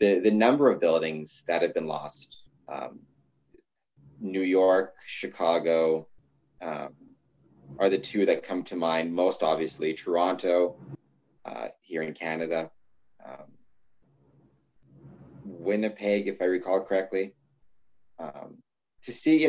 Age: 30-49